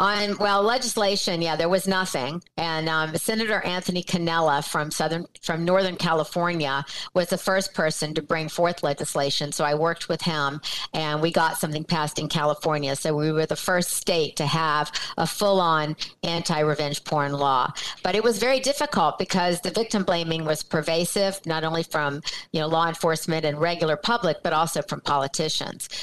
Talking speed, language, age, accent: 175 wpm, English, 50-69, American